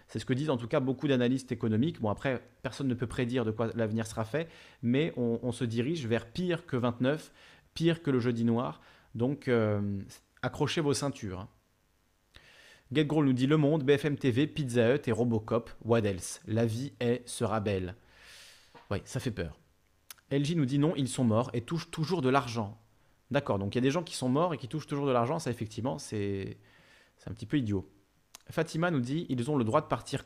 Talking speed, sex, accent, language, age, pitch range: 215 wpm, male, French, French, 30-49, 110-140 Hz